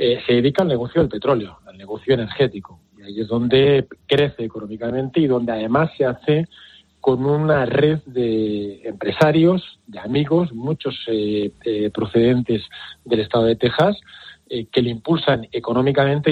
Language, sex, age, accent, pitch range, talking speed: Spanish, male, 40-59, Spanish, 110-140 Hz, 150 wpm